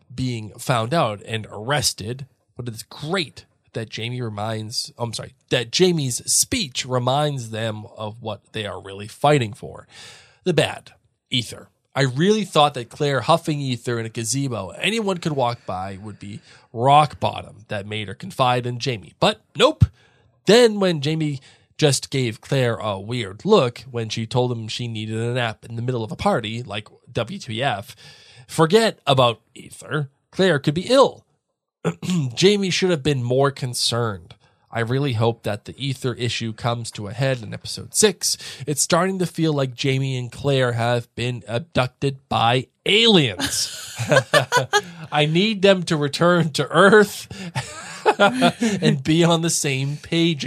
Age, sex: 20-39, male